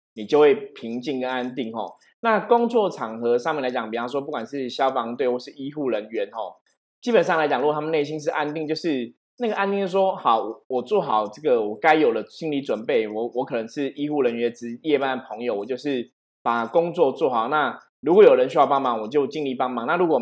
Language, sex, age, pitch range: Chinese, male, 20-39, 125-185 Hz